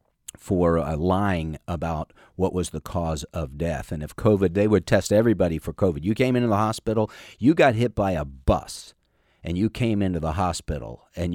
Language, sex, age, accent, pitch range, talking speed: English, male, 50-69, American, 80-100 Hz, 195 wpm